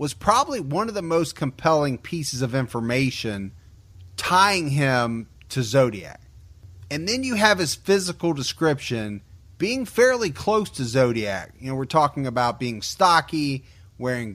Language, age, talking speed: English, 30-49, 140 wpm